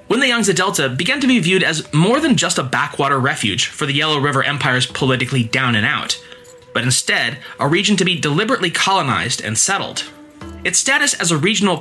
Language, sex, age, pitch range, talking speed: English, male, 20-39, 130-215 Hz, 200 wpm